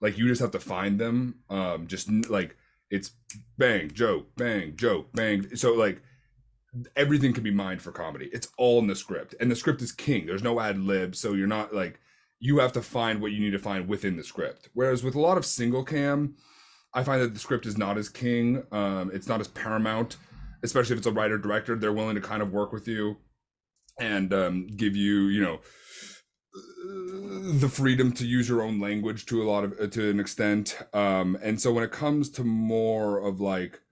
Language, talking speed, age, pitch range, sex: English, 210 wpm, 30-49, 100-120 Hz, male